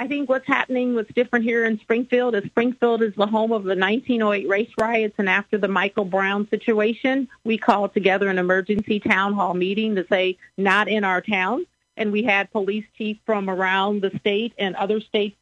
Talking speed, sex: 200 wpm, female